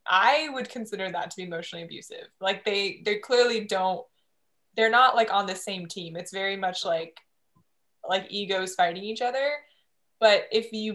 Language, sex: English, female